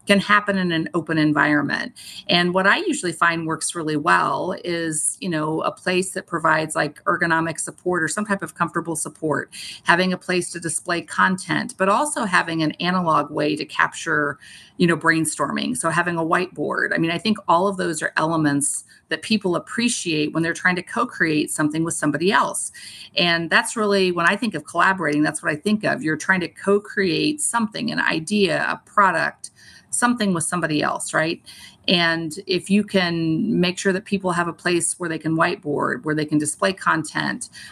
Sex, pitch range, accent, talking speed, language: female, 160-185 Hz, American, 190 wpm, English